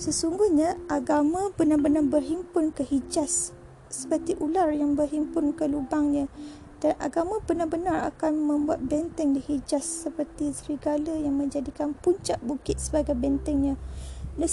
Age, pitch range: 30-49, 270-330 Hz